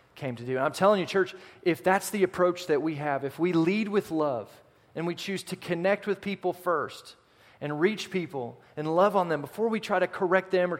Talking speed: 235 wpm